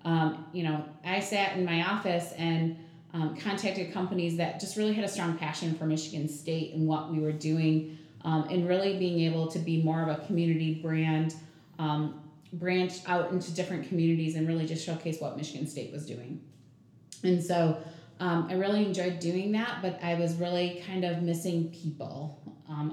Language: English